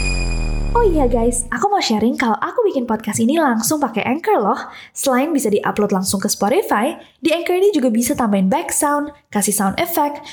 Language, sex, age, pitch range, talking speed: Indonesian, female, 20-39, 220-290 Hz, 180 wpm